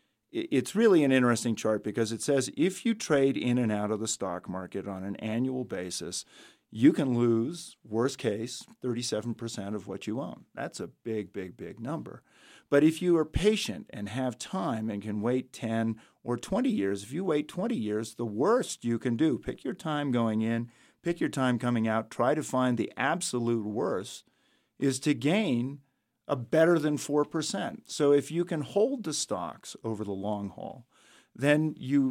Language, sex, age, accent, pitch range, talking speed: English, male, 50-69, American, 105-135 Hz, 185 wpm